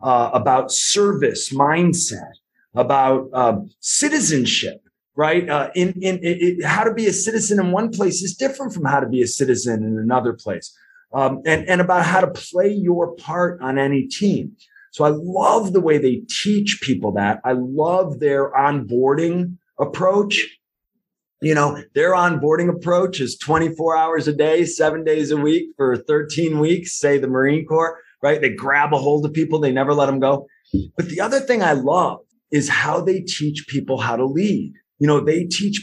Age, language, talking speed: 30-49, English, 185 wpm